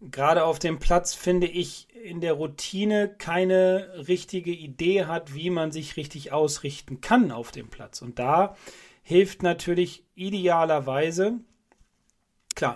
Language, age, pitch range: German, 40-59, 145-185 Hz